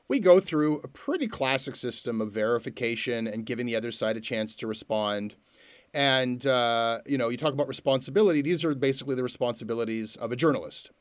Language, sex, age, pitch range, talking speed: English, male, 30-49, 120-145 Hz, 185 wpm